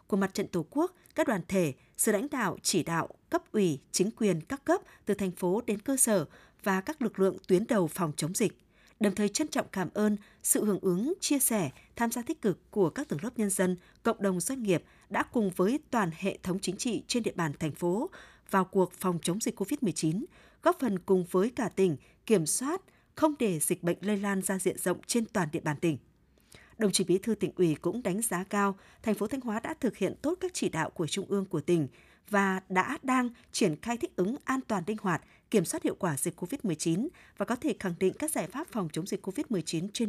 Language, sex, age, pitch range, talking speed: Vietnamese, female, 20-39, 180-235 Hz, 235 wpm